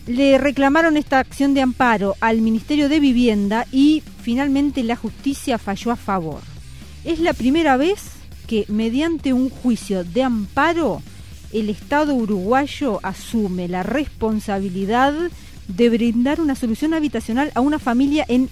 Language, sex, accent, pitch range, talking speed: Spanish, female, Argentinian, 210-270 Hz, 135 wpm